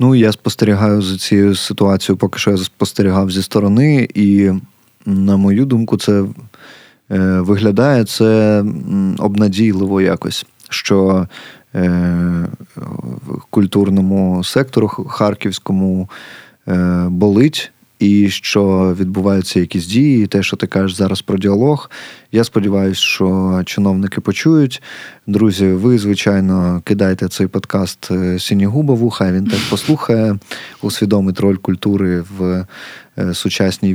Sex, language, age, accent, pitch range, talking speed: male, Ukrainian, 20-39, native, 95-105 Hz, 110 wpm